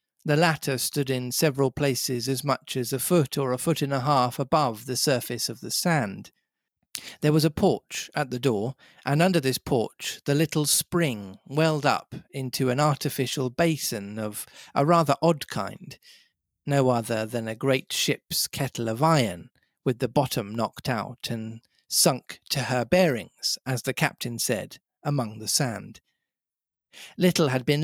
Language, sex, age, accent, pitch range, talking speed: English, male, 40-59, British, 125-150 Hz, 165 wpm